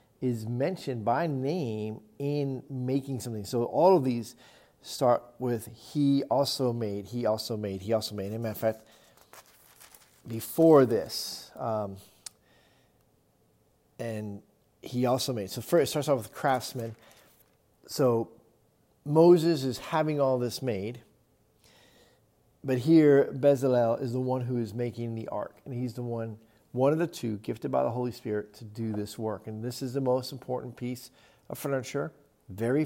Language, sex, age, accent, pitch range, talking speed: English, male, 40-59, American, 110-135 Hz, 150 wpm